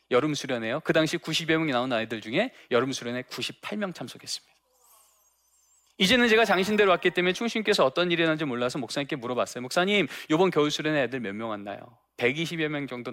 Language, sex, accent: Korean, male, native